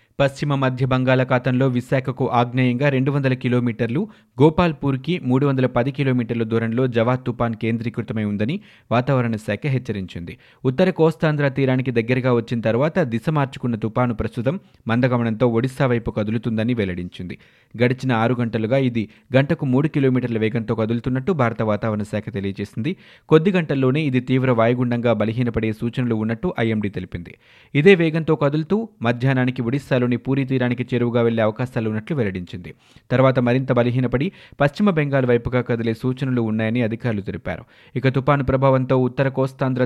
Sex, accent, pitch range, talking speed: male, native, 115-135 Hz, 125 wpm